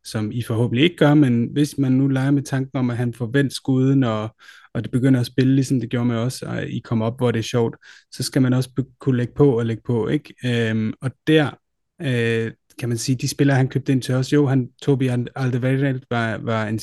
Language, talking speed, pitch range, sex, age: Danish, 245 wpm, 115-140 Hz, male, 30-49